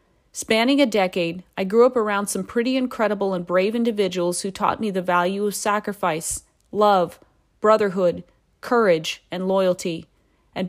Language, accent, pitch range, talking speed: English, American, 185-220 Hz, 145 wpm